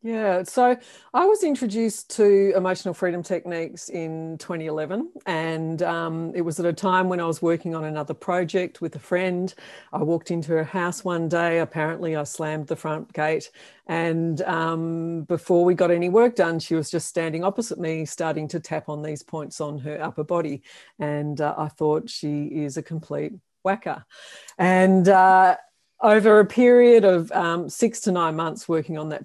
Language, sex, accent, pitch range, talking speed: English, female, Australian, 155-190 Hz, 180 wpm